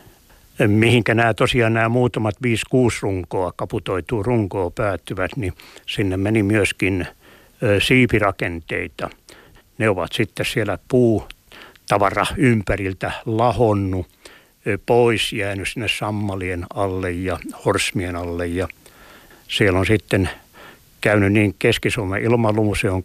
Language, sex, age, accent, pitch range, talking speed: Finnish, male, 60-79, native, 95-115 Hz, 105 wpm